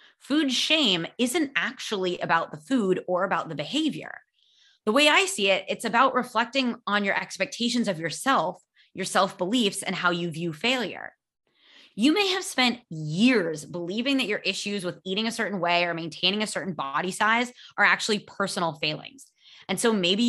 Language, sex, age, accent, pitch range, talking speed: English, female, 20-39, American, 175-250 Hz, 170 wpm